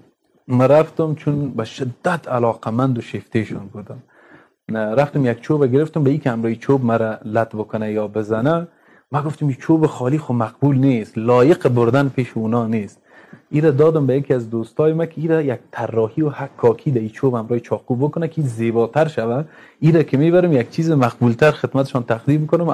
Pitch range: 120-150 Hz